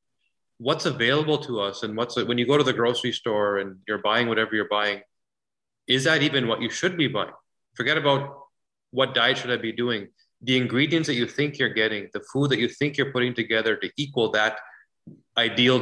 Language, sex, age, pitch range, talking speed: English, male, 30-49, 110-130 Hz, 205 wpm